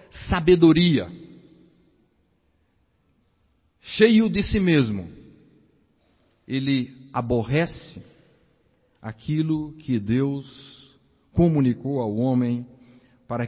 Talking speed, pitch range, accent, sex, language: 60 wpm, 110-145 Hz, Brazilian, male, Portuguese